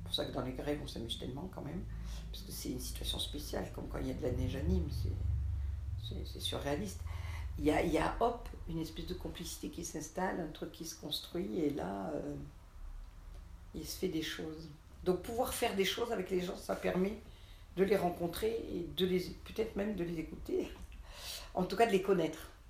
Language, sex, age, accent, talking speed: French, female, 50-69, French, 225 wpm